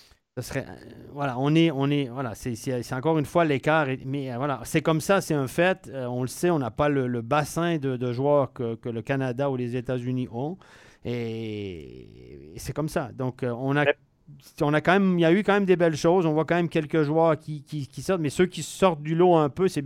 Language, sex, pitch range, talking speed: French, male, 130-155 Hz, 245 wpm